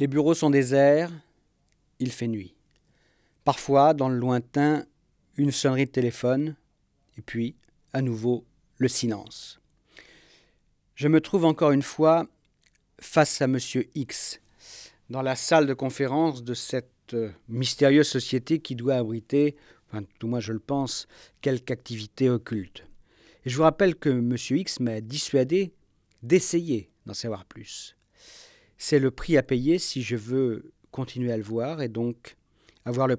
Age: 50-69